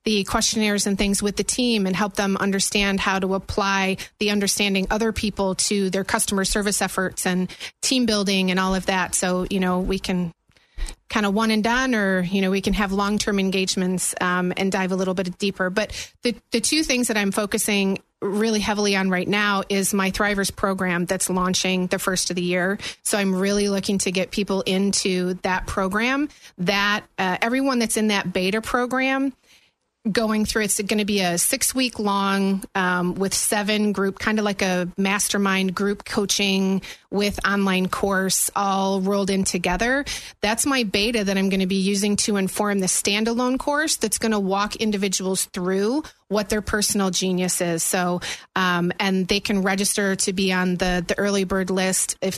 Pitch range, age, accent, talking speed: 190-215 Hz, 30-49, American, 190 wpm